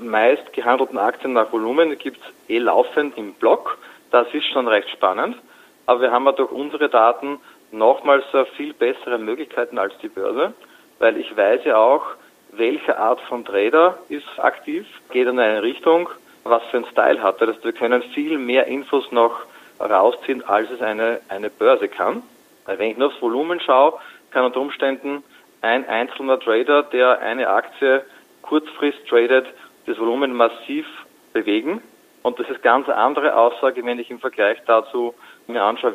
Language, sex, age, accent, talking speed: German, male, 40-59, Austrian, 165 wpm